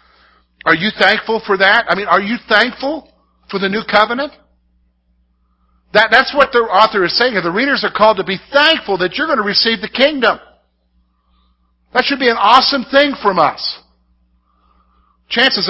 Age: 50-69